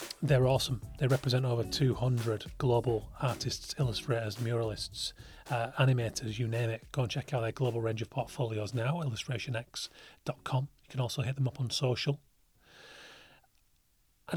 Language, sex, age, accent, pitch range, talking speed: English, male, 30-49, British, 115-145 Hz, 145 wpm